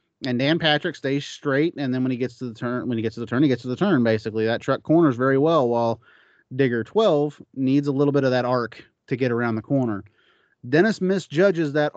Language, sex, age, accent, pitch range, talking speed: English, male, 30-49, American, 125-165 Hz, 240 wpm